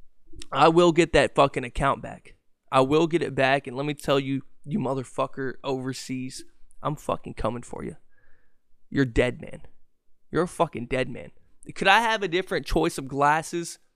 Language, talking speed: English, 175 wpm